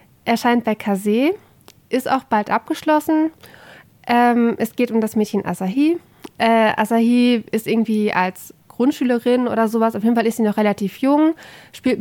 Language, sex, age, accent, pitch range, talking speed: German, female, 20-39, German, 210-245 Hz, 155 wpm